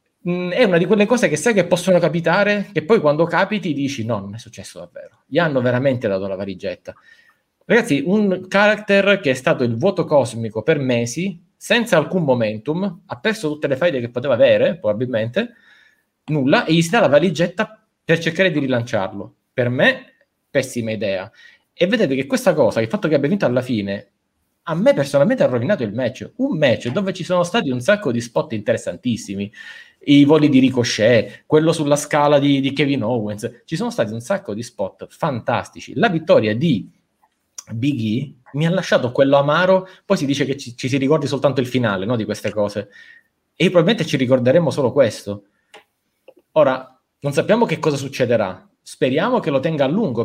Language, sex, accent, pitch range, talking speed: Italian, male, native, 125-185 Hz, 185 wpm